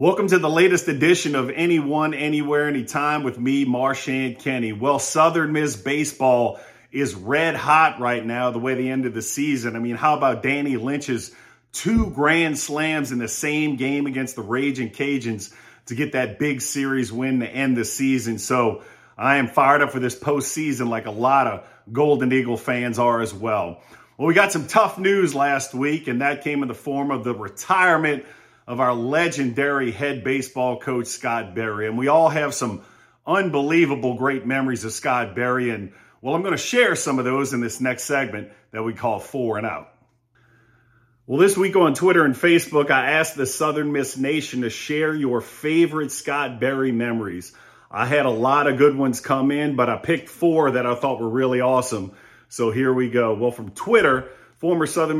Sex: male